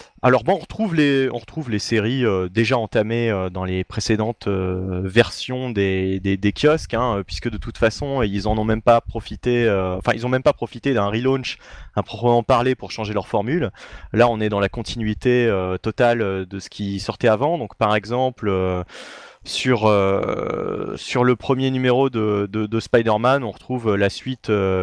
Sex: male